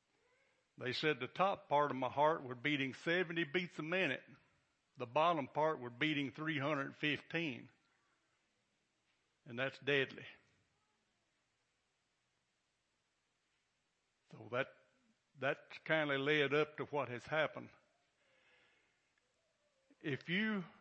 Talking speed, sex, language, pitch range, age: 105 wpm, male, English, 140-180 Hz, 60-79